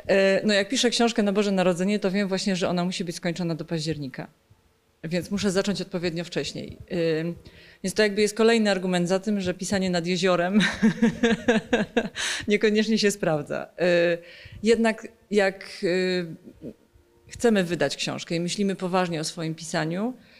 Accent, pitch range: native, 170-205 Hz